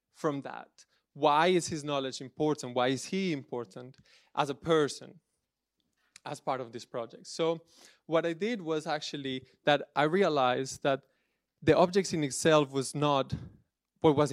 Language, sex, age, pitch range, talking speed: French, male, 20-39, 135-165 Hz, 155 wpm